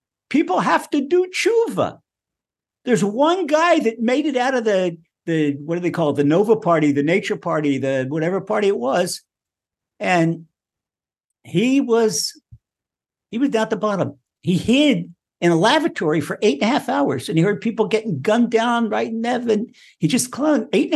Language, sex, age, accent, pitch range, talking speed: English, male, 60-79, American, 165-255 Hz, 190 wpm